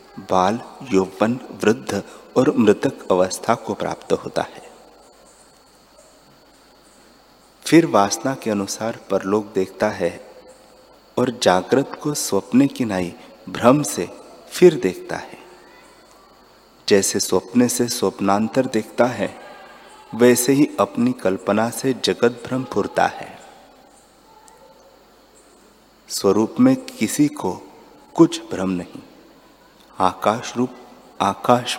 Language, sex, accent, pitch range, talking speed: Hindi, male, native, 100-135 Hz, 100 wpm